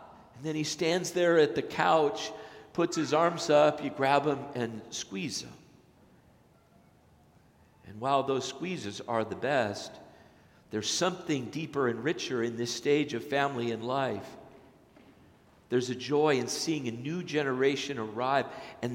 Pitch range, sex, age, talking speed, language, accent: 115-155 Hz, male, 50-69, 150 wpm, English, American